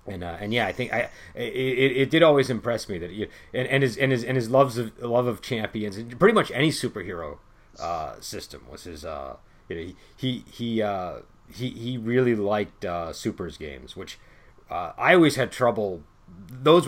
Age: 40-59